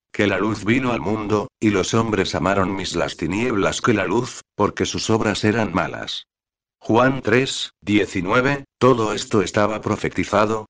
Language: Spanish